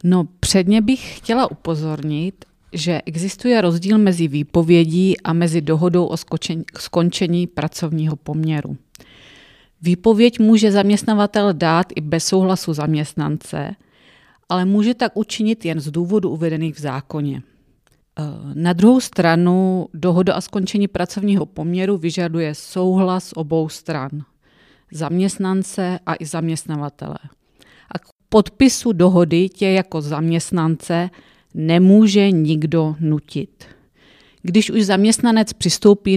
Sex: female